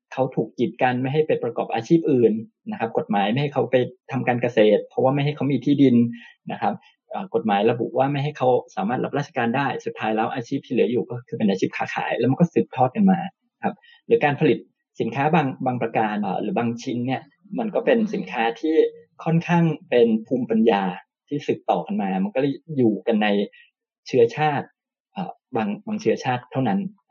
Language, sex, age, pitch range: Thai, male, 20-39, 120-190 Hz